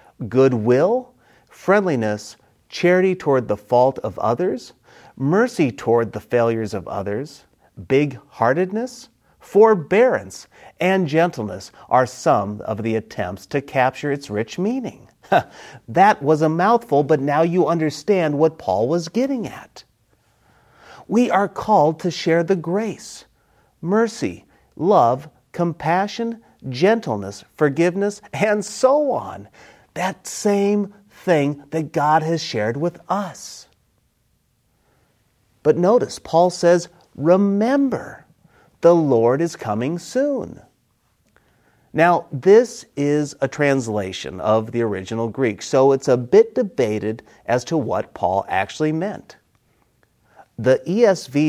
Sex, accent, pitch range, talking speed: male, American, 115-185 Hz, 115 wpm